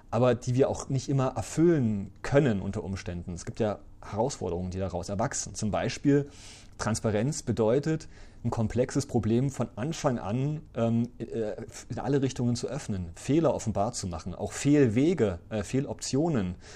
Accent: German